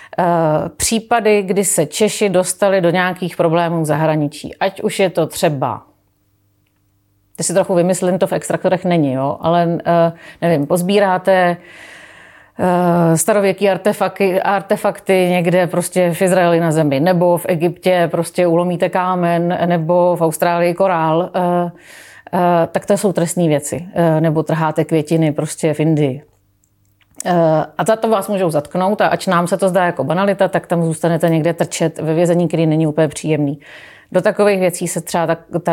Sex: female